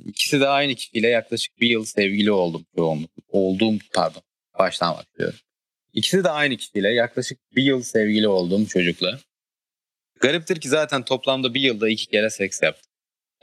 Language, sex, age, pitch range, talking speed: Turkish, male, 30-49, 105-125 Hz, 150 wpm